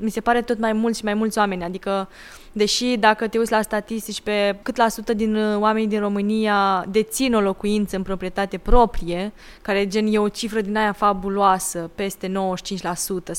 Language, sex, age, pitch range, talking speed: Romanian, female, 20-39, 190-230 Hz, 185 wpm